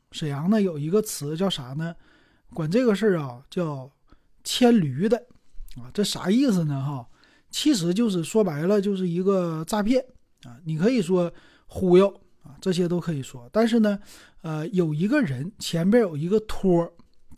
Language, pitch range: Chinese, 160-215 Hz